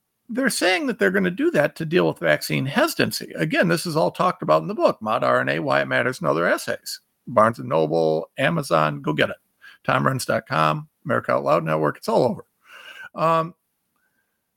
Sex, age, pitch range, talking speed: male, 50-69, 145-225 Hz, 190 wpm